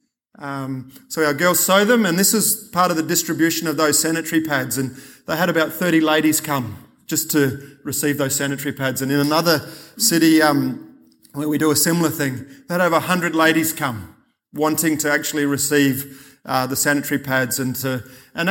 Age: 30-49